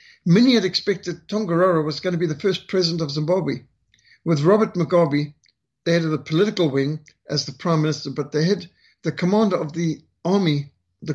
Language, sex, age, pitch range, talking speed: English, male, 60-79, 150-180 Hz, 190 wpm